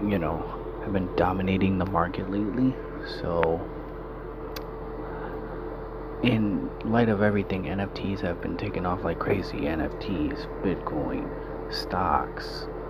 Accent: American